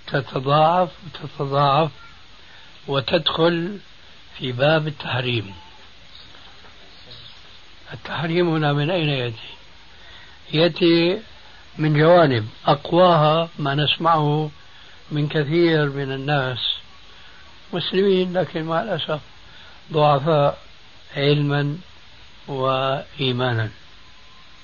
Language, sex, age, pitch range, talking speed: Arabic, male, 60-79, 125-160 Hz, 70 wpm